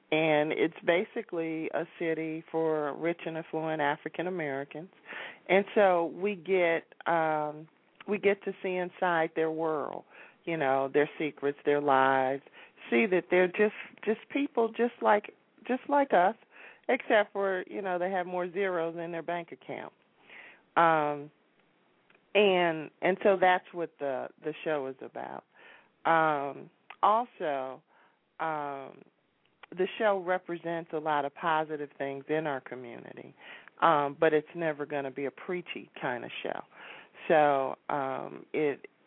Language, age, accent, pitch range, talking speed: English, 40-59, American, 145-180 Hz, 140 wpm